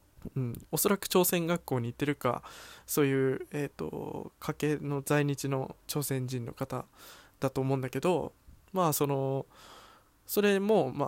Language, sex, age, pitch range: Japanese, male, 20-39, 130-170 Hz